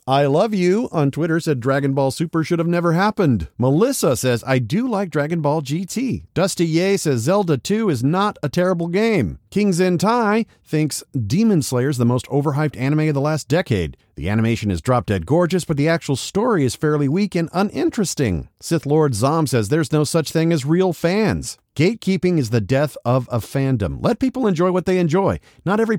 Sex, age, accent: male, 50-69, American